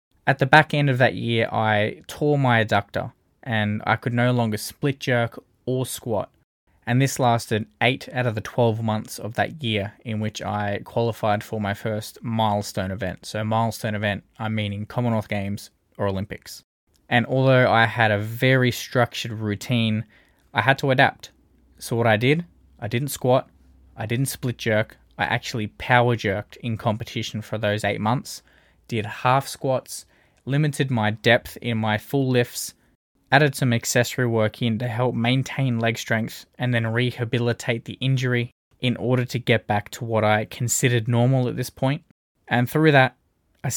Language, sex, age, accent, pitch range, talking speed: English, male, 20-39, Australian, 105-125 Hz, 170 wpm